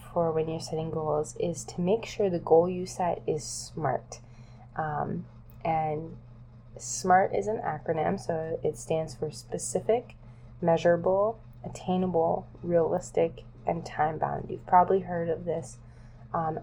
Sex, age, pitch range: female, 20-39, 120-170 Hz